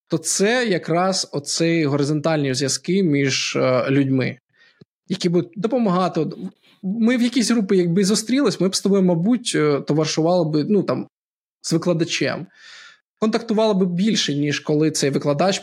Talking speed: 130 wpm